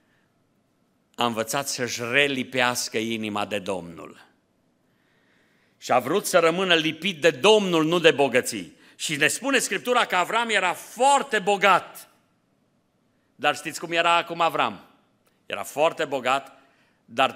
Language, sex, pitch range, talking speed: Romanian, male, 130-175 Hz, 130 wpm